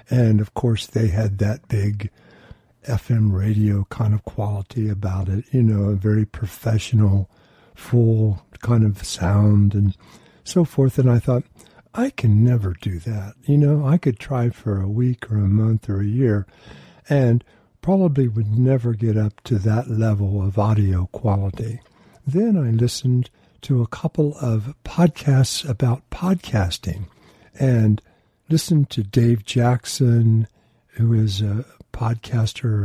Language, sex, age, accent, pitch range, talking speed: English, male, 60-79, American, 105-130 Hz, 145 wpm